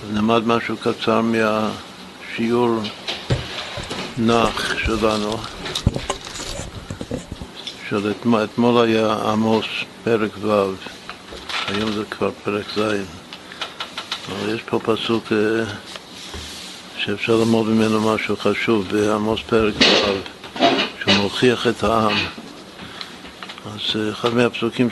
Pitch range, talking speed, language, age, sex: 105-115 Hz, 90 wpm, Hebrew, 60-79, male